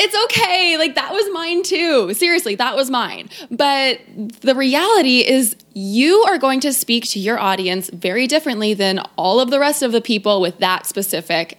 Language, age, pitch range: English, 20-39, 205-280 Hz